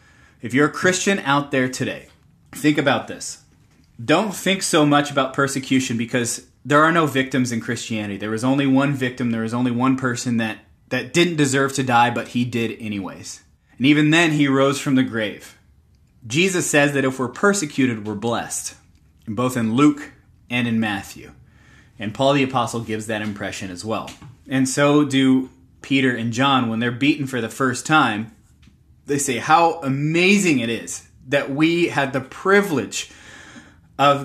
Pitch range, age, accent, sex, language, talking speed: 120-150 Hz, 20-39, American, male, English, 175 wpm